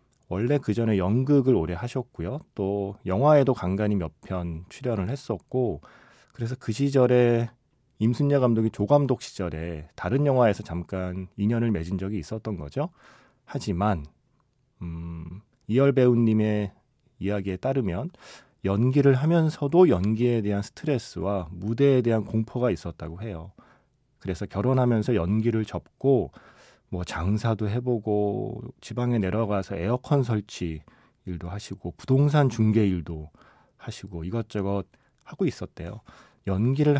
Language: Korean